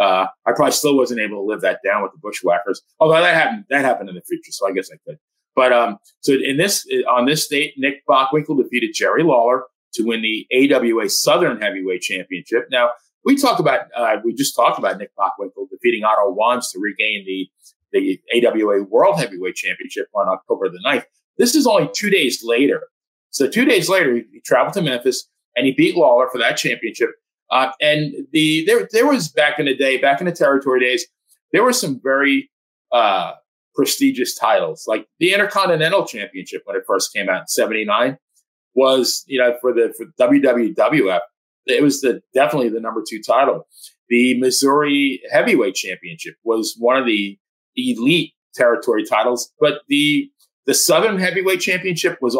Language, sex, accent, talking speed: English, male, American, 180 wpm